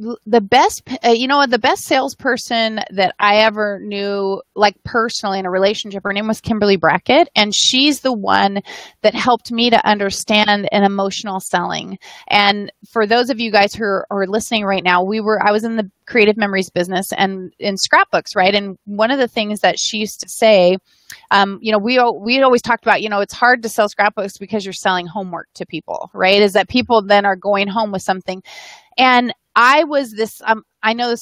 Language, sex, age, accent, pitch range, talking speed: English, female, 30-49, American, 195-235 Hz, 205 wpm